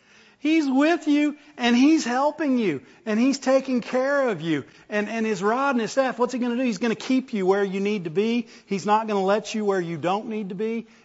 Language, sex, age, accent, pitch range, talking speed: English, male, 40-59, American, 195-250 Hz, 255 wpm